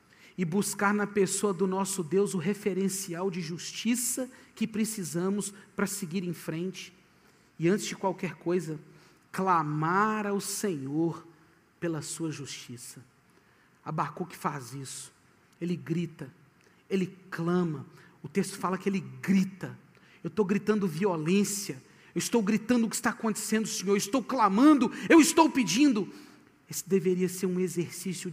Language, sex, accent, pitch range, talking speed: Portuguese, male, Brazilian, 180-240 Hz, 135 wpm